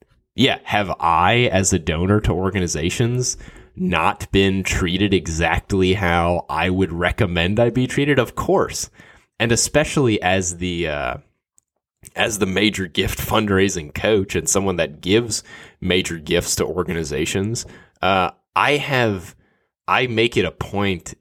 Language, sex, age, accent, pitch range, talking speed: English, male, 20-39, American, 90-115 Hz, 135 wpm